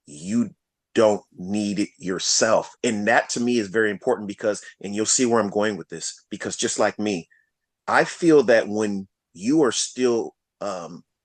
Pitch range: 100-125 Hz